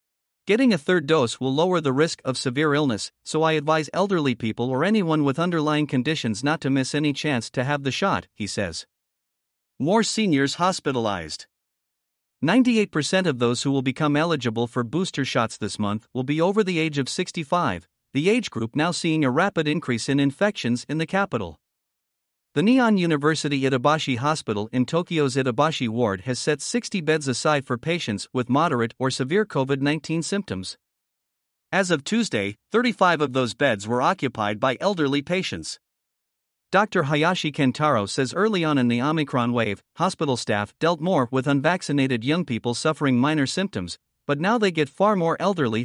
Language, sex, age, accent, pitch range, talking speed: English, male, 50-69, American, 125-170 Hz, 170 wpm